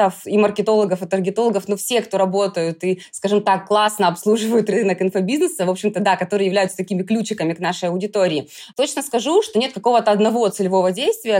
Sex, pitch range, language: female, 195-235 Hz, Russian